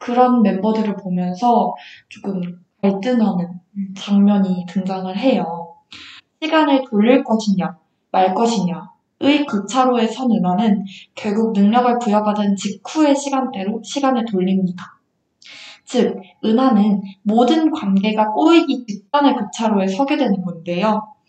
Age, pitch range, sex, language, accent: 20-39, 195-250 Hz, female, Korean, native